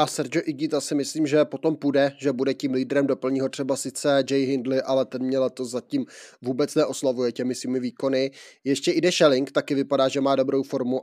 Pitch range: 135-155 Hz